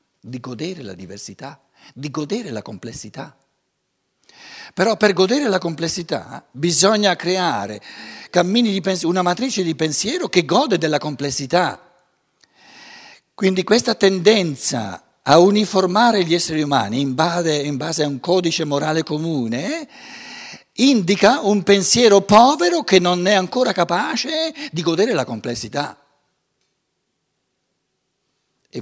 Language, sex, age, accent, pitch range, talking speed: Italian, male, 60-79, native, 135-200 Hz, 120 wpm